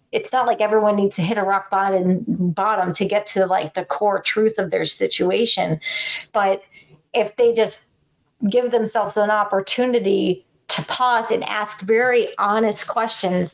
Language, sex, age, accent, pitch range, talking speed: English, female, 30-49, American, 190-230 Hz, 160 wpm